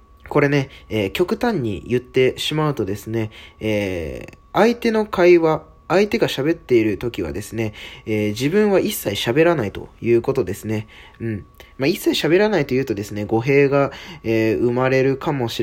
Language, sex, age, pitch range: Japanese, male, 20-39, 105-155 Hz